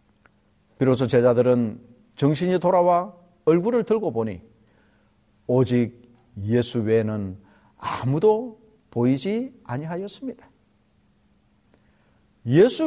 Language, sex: Korean, male